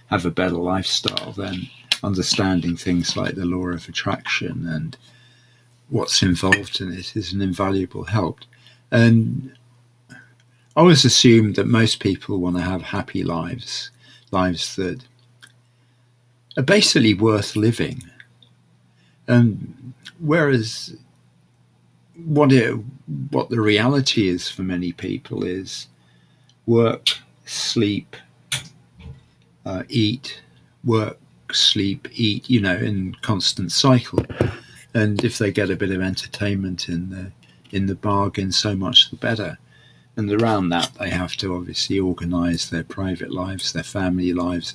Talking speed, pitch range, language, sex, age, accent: 125 wpm, 90-120 Hz, English, male, 50-69, British